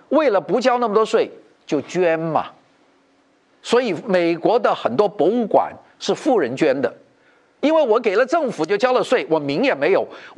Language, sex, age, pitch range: Chinese, male, 50-69, 185-270 Hz